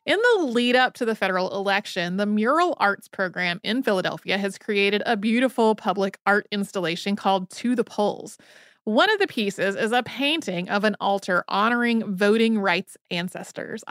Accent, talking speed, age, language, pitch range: American, 165 wpm, 30-49, English, 190-235 Hz